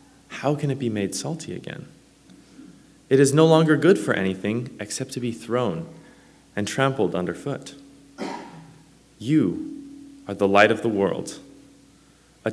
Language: English